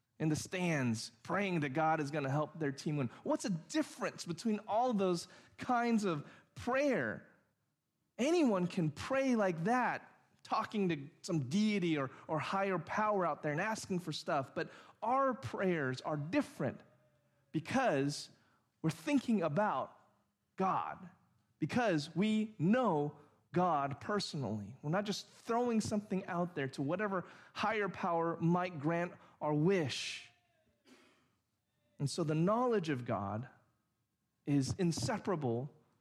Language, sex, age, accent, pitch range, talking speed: English, male, 30-49, American, 135-200 Hz, 130 wpm